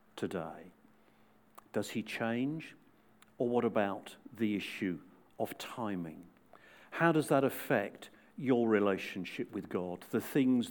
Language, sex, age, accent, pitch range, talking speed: English, male, 50-69, British, 100-130 Hz, 120 wpm